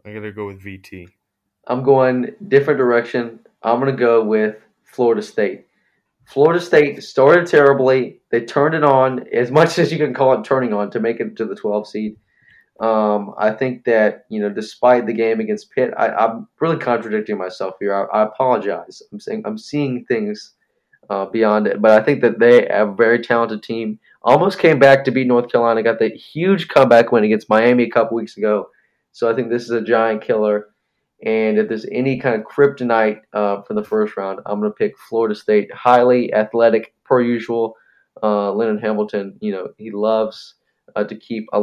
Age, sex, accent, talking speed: 20-39, male, American, 195 wpm